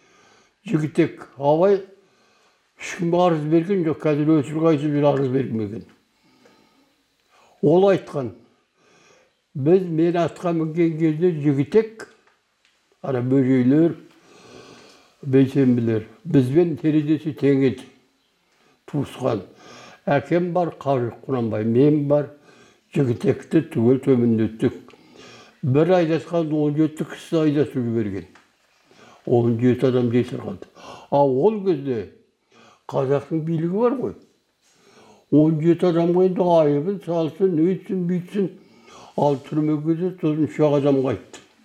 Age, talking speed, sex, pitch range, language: 60-79, 35 wpm, male, 135-170 Hz, Russian